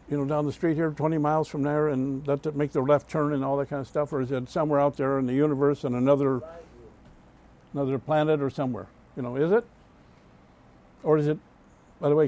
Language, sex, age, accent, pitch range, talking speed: English, male, 60-79, American, 135-175 Hz, 235 wpm